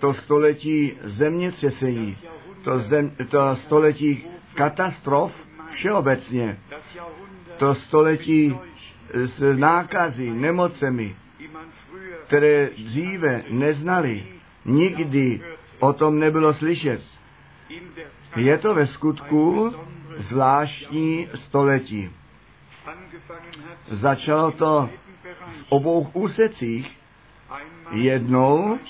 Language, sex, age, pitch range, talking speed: Czech, male, 50-69, 135-160 Hz, 70 wpm